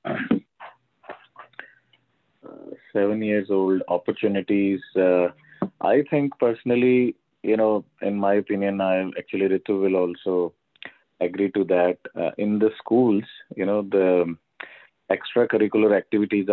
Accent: Indian